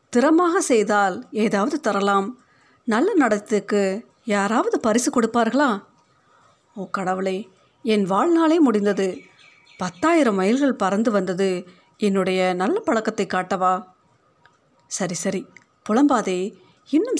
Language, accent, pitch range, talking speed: Tamil, native, 190-250 Hz, 90 wpm